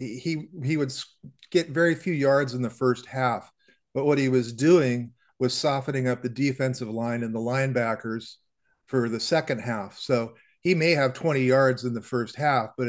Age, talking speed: 40-59, 185 wpm